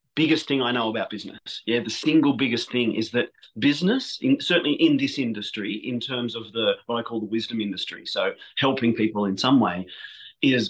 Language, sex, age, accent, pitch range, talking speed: English, male, 30-49, Australian, 115-135 Hz, 200 wpm